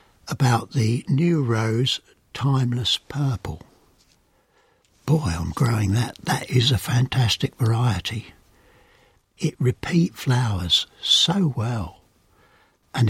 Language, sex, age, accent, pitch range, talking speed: English, male, 60-79, British, 110-145 Hz, 95 wpm